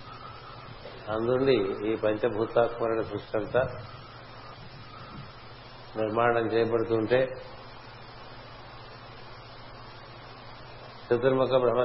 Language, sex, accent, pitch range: Telugu, male, native, 115-125 Hz